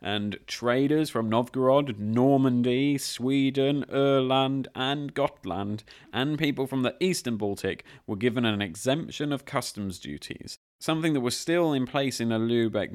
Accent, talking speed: British, 145 wpm